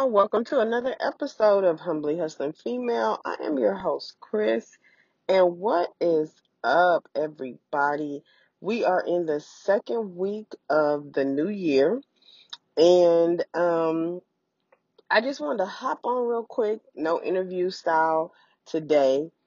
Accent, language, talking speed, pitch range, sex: American, English, 130 wpm, 150-205 Hz, female